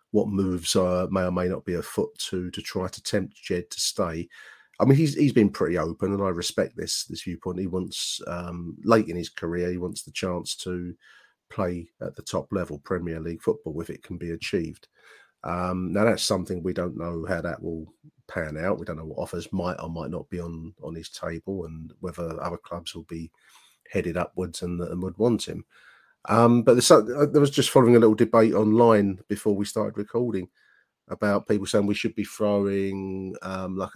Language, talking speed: English, 210 wpm